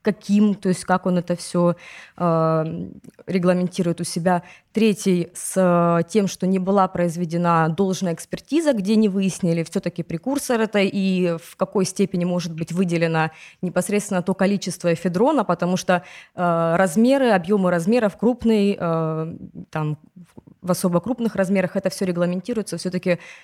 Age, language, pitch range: 20-39, Russian, 170-200 Hz